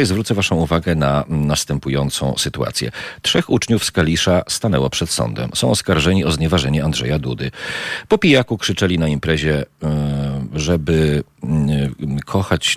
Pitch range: 70-85 Hz